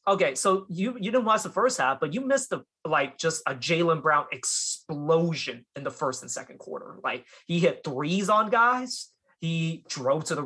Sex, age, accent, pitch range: male, 20-39, American, 155-225 Hz